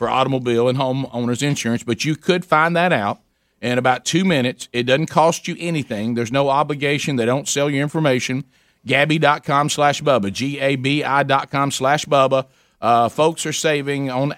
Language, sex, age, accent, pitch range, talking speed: English, male, 50-69, American, 125-150 Hz, 165 wpm